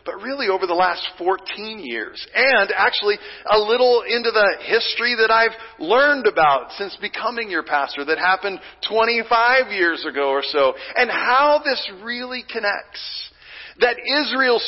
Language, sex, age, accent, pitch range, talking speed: English, male, 40-59, American, 175-245 Hz, 145 wpm